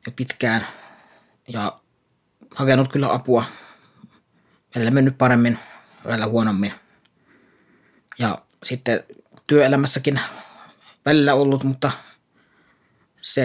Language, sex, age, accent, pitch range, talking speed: Finnish, male, 30-49, native, 115-130 Hz, 80 wpm